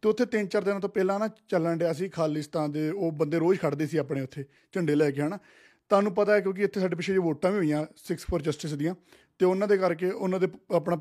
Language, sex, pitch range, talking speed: Punjabi, male, 155-185 Hz, 235 wpm